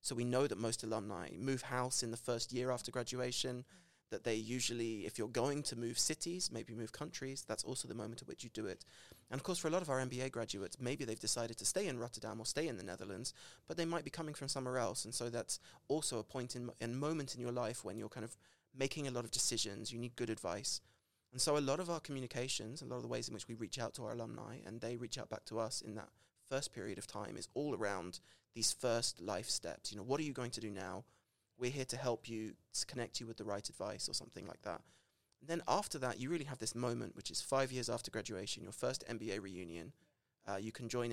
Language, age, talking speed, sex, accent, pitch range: English, 20-39, 265 wpm, male, British, 110-130 Hz